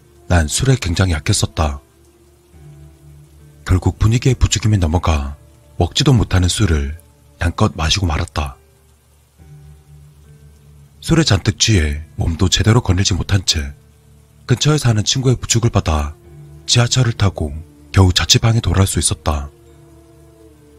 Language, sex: Korean, male